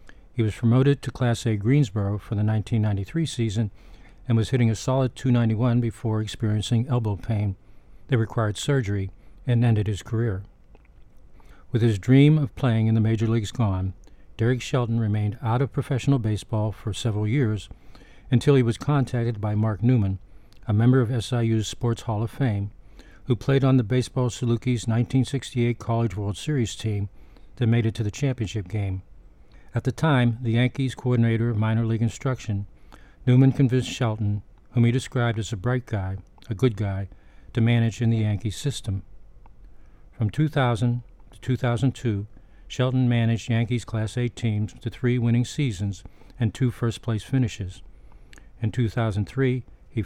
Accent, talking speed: American, 155 wpm